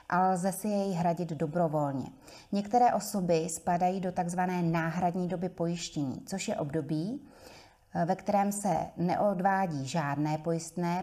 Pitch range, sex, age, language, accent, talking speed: 160-190 Hz, female, 30-49, Czech, native, 125 wpm